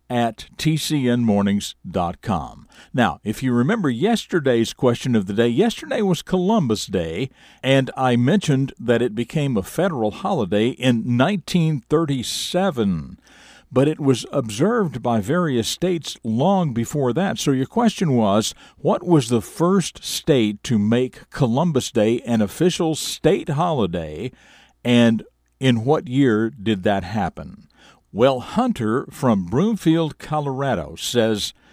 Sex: male